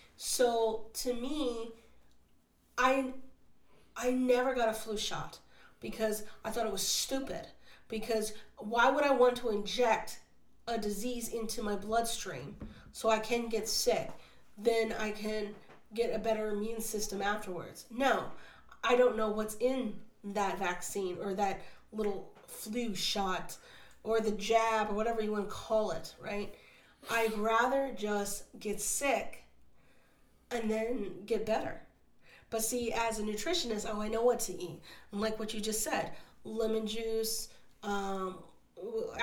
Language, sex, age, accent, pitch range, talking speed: English, female, 40-59, American, 210-240 Hz, 145 wpm